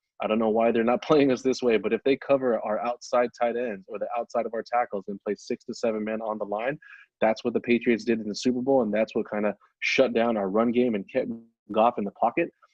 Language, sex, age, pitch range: English, male, 20-39, 105-130 Hz